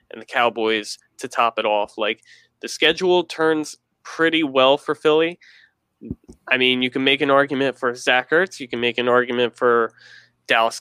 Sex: male